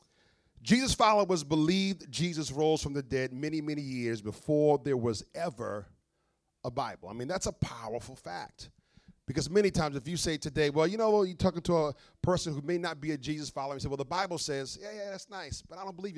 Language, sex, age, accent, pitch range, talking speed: English, male, 40-59, American, 130-175 Hz, 220 wpm